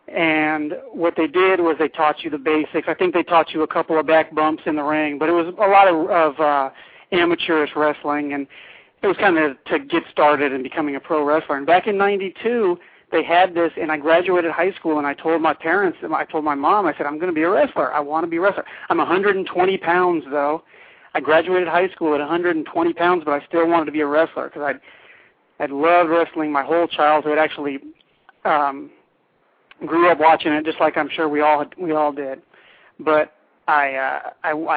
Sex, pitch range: male, 150-180 Hz